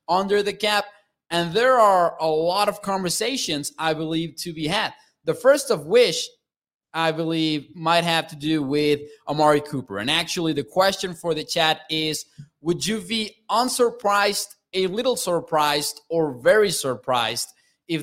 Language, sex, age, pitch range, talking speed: English, male, 20-39, 155-205 Hz, 155 wpm